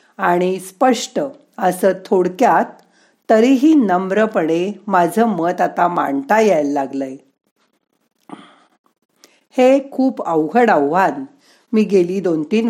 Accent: native